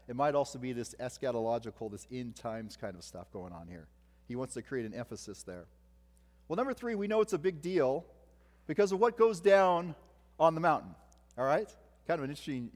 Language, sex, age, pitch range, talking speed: English, male, 40-59, 115-170 Hz, 210 wpm